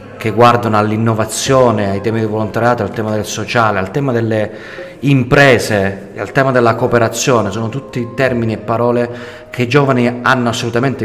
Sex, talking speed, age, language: male, 160 wpm, 30-49, Italian